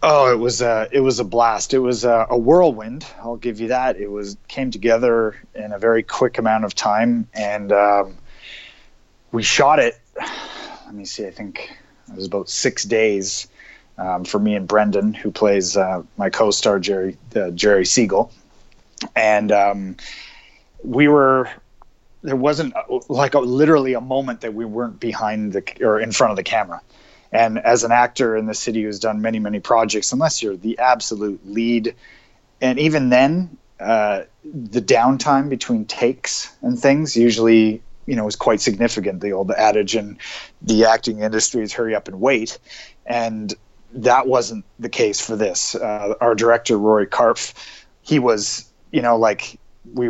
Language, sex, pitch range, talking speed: English, male, 105-130 Hz, 170 wpm